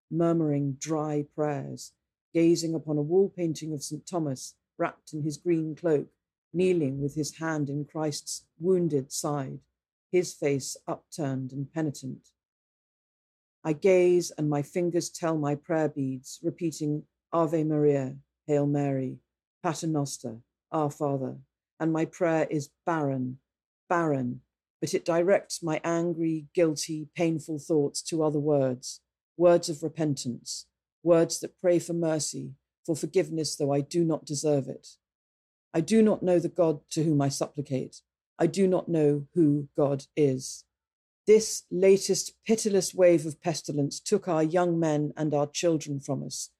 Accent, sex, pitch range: British, female, 145-170 Hz